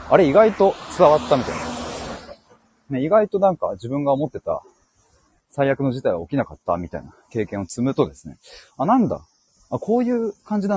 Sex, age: male, 30-49